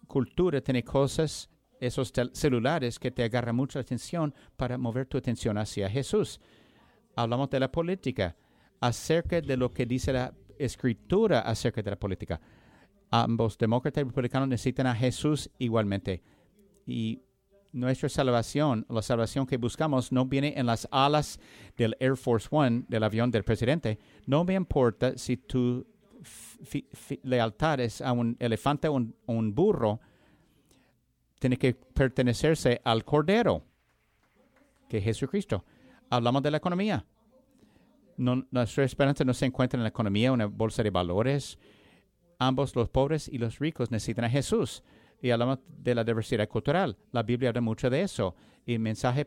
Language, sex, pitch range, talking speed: English, male, 115-140 Hz, 145 wpm